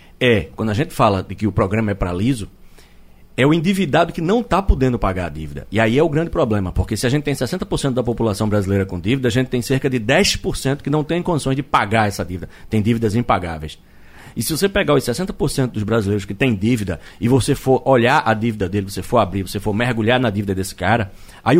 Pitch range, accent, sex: 100-140 Hz, Brazilian, male